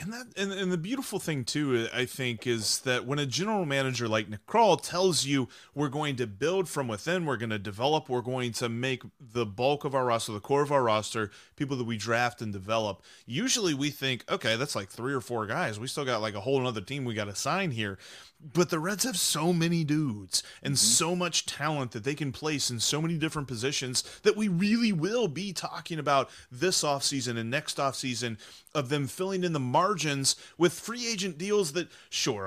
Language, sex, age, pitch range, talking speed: English, male, 30-49, 125-175 Hz, 215 wpm